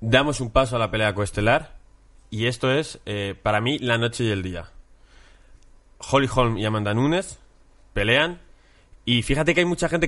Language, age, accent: Spanish, 20-39, Spanish